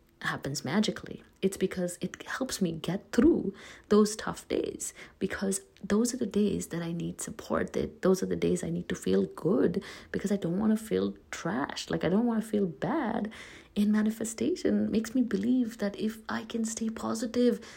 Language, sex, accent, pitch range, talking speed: English, female, Indian, 175-225 Hz, 190 wpm